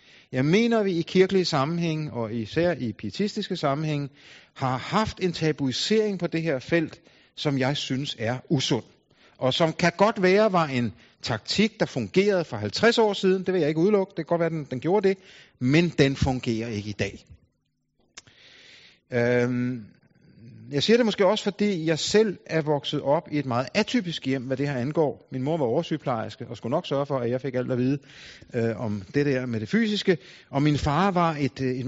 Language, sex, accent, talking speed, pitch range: Danish, male, native, 200 wpm, 125-175 Hz